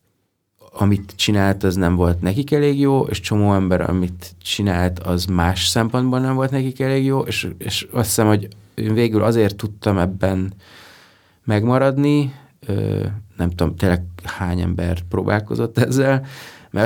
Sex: male